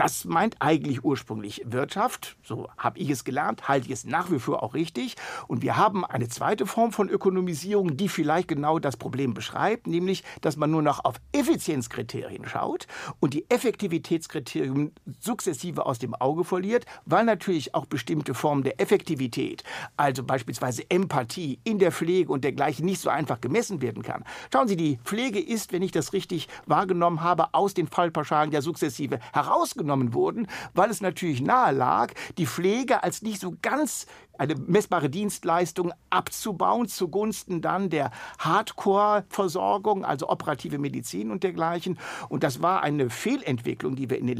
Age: 60-79